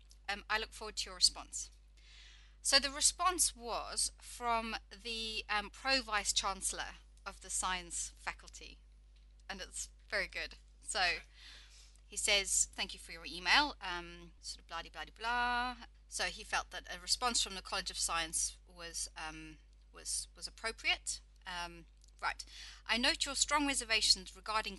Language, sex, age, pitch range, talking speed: English, female, 30-49, 170-230 Hz, 155 wpm